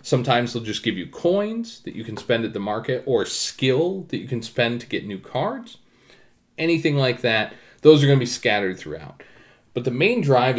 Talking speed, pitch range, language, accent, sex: 210 wpm, 105-135 Hz, English, American, male